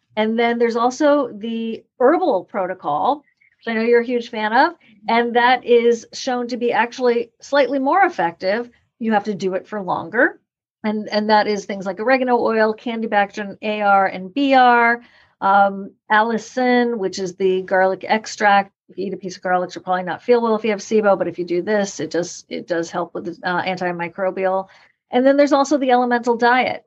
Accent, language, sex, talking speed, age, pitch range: American, English, female, 195 wpm, 50-69, 190-240 Hz